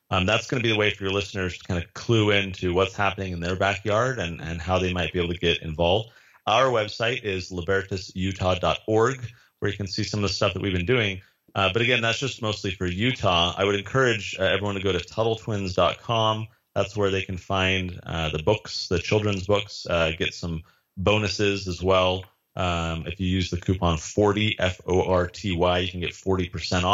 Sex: male